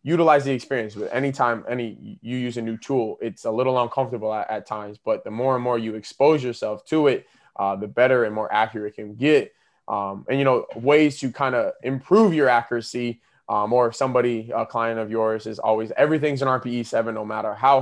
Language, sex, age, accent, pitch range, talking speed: English, male, 20-39, American, 110-130 Hz, 210 wpm